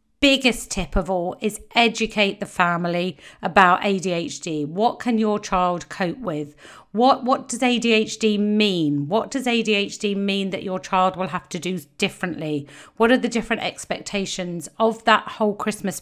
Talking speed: 155 wpm